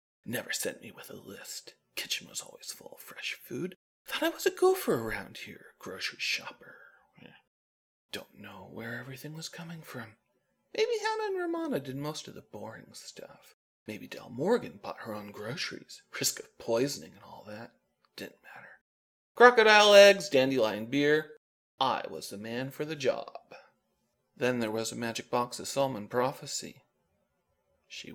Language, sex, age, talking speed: English, male, 40-59, 160 wpm